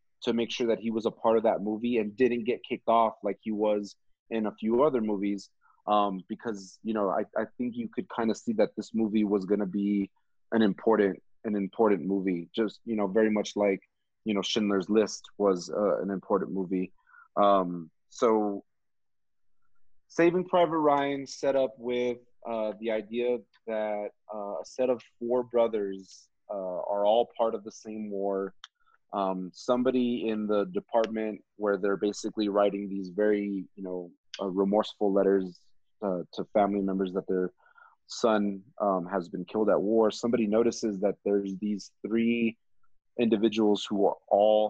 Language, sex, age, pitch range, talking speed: English, male, 30-49, 100-115 Hz, 170 wpm